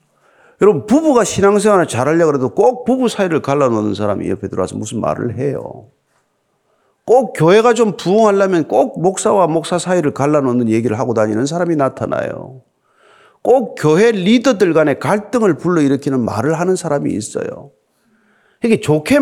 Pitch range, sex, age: 135-220 Hz, male, 40-59